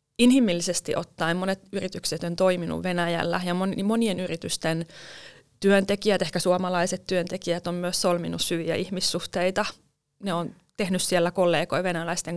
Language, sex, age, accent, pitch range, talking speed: Finnish, female, 20-39, native, 170-200 Hz, 120 wpm